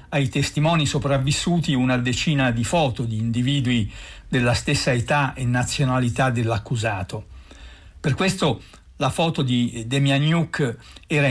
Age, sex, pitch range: 60-79, male, 115-145 Hz